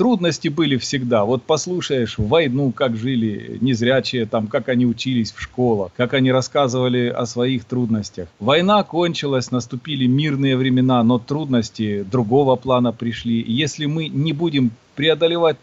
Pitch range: 115-140 Hz